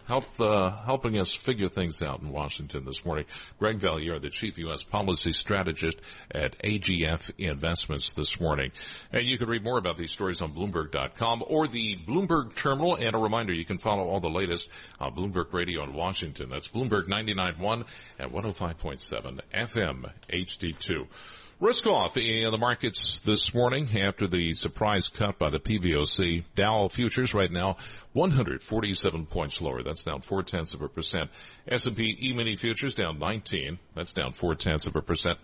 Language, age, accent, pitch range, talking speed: English, 50-69, American, 80-115 Hz, 165 wpm